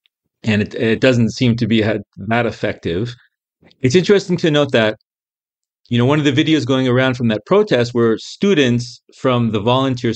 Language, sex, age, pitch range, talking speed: English, male, 40-59, 105-135 Hz, 175 wpm